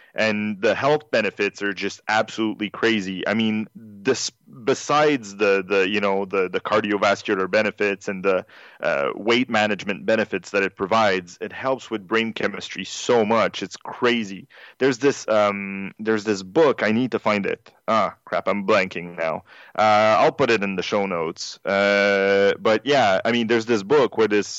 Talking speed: 175 wpm